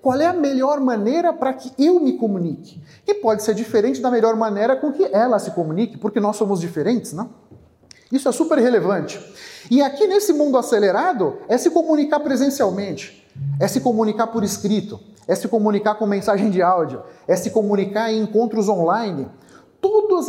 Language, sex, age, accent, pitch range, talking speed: Portuguese, male, 40-59, Brazilian, 205-290 Hz, 175 wpm